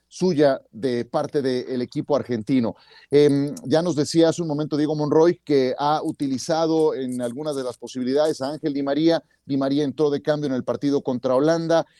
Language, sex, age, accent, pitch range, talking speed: Spanish, male, 40-59, Mexican, 140-170 Hz, 185 wpm